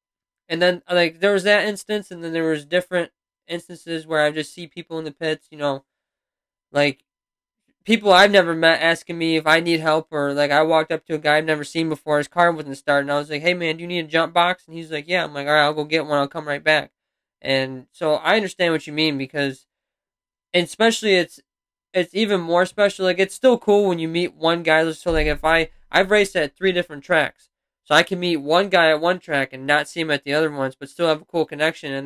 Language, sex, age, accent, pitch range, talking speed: English, male, 20-39, American, 145-175 Hz, 255 wpm